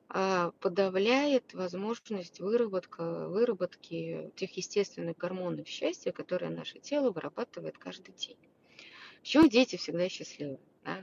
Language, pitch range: Russian, 170-210 Hz